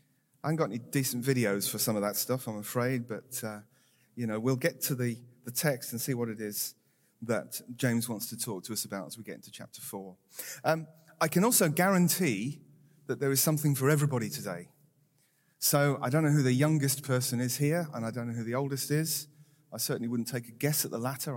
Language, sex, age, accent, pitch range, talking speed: English, male, 40-59, British, 125-155 Hz, 225 wpm